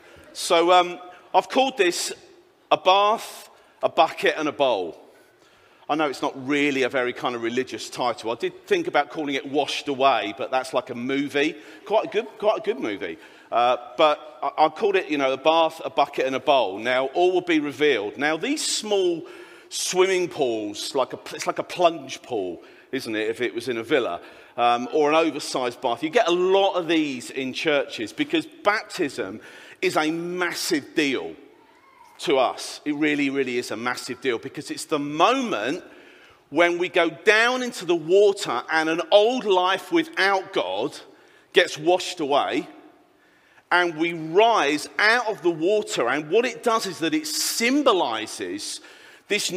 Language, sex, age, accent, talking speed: English, male, 40-59, British, 180 wpm